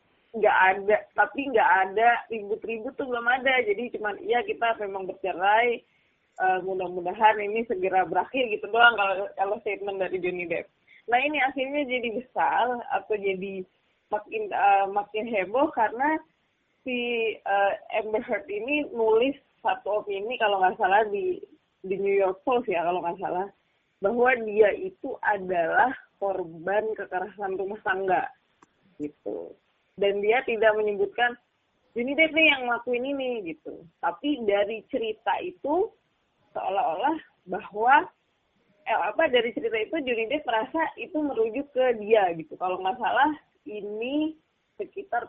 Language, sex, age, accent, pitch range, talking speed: Indonesian, female, 20-39, native, 195-280 Hz, 135 wpm